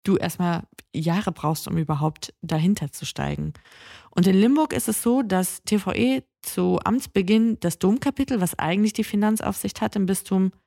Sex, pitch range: female, 170-210 Hz